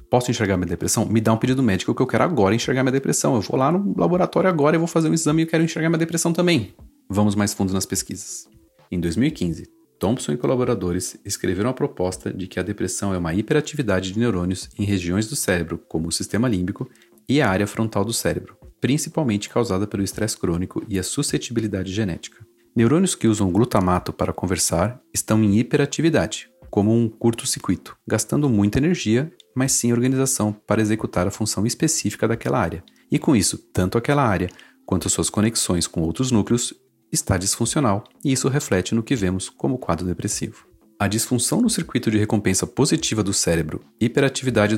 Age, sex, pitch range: 40-59, male, 95-130 Hz